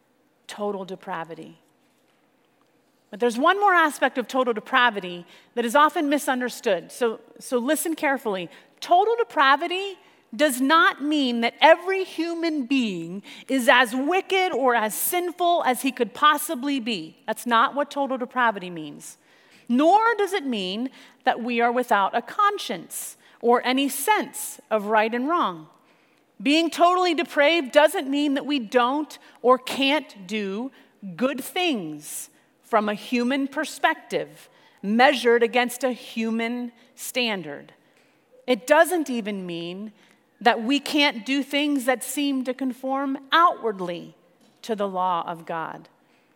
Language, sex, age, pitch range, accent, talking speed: English, female, 30-49, 225-295 Hz, American, 130 wpm